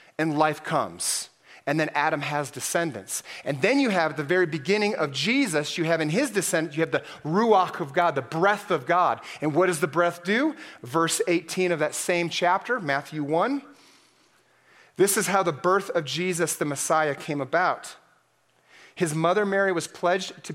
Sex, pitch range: male, 155-195 Hz